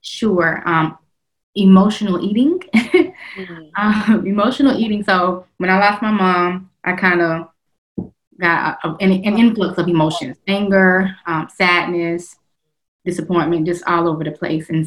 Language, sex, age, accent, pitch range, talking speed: English, female, 20-39, American, 170-200 Hz, 130 wpm